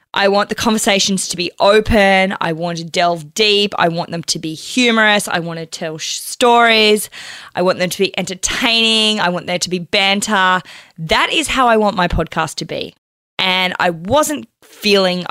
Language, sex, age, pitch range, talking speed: English, female, 20-39, 170-225 Hz, 190 wpm